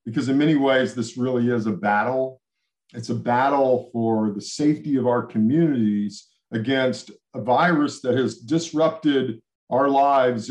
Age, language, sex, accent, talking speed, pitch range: 50-69, English, male, American, 150 wpm, 120-145 Hz